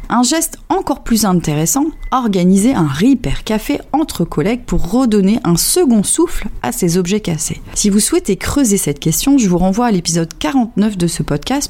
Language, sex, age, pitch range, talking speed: French, female, 40-59, 170-245 Hz, 180 wpm